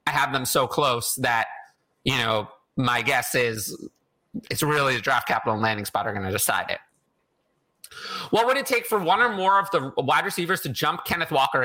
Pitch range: 130-190 Hz